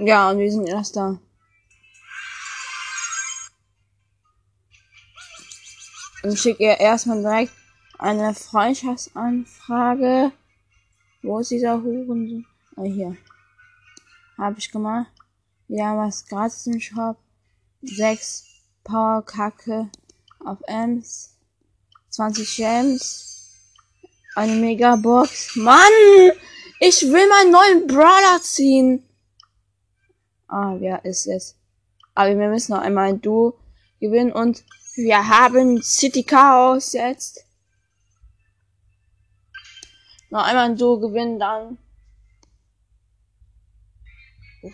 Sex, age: female, 10-29